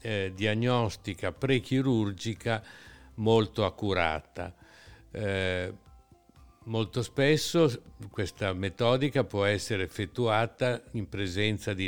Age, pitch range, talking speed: 60-79, 95-115 Hz, 75 wpm